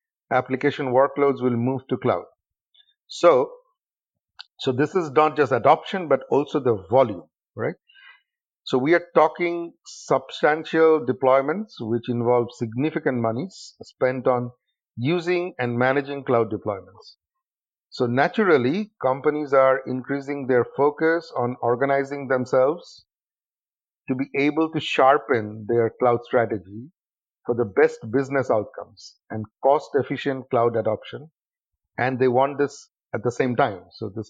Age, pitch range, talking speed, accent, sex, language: 50-69, 125-155 Hz, 125 wpm, Indian, male, English